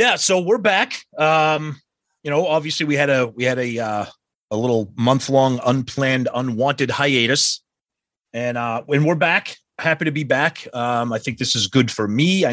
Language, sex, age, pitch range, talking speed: English, male, 30-49, 120-155 Hz, 190 wpm